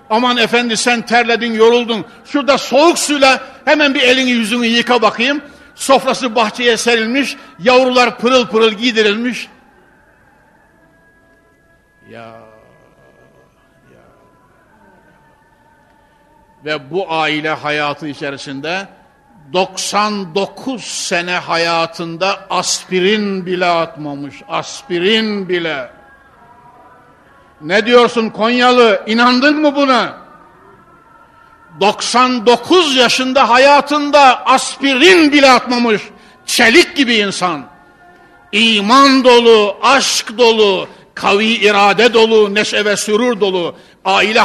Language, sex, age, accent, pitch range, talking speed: Turkish, male, 60-79, native, 200-260 Hz, 85 wpm